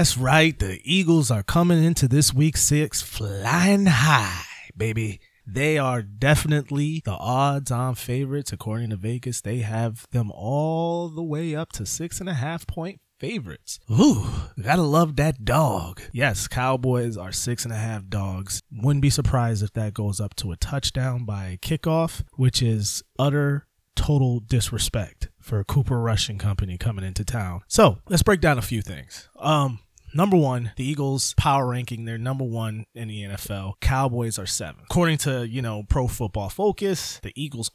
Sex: male